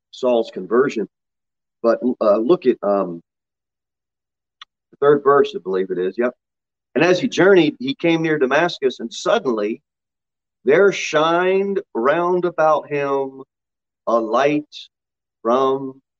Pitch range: 135-180 Hz